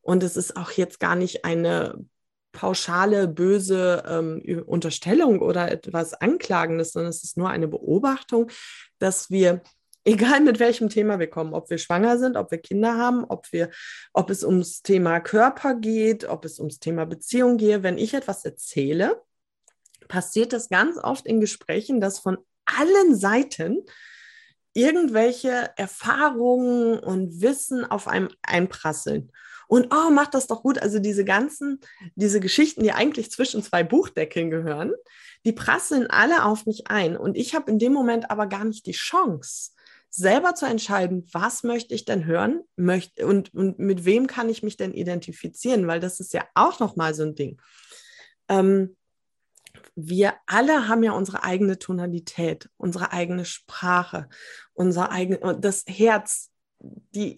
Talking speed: 155 wpm